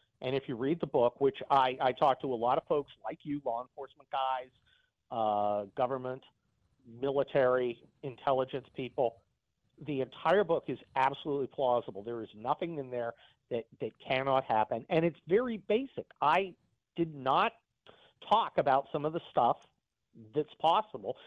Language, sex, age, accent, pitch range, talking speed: English, male, 50-69, American, 125-165 Hz, 155 wpm